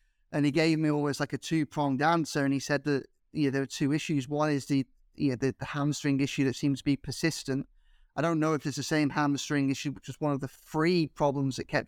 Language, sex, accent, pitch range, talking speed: English, male, British, 140-155 Hz, 270 wpm